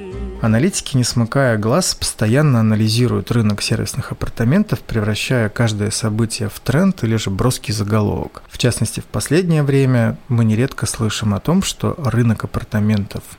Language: Russian